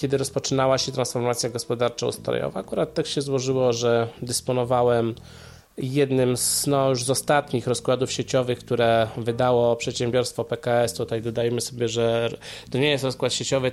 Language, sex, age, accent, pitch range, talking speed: Polish, male, 20-39, native, 125-170 Hz, 140 wpm